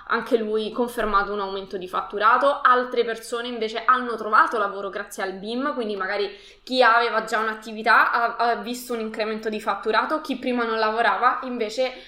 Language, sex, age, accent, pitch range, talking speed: Italian, female, 20-39, native, 205-250 Hz, 170 wpm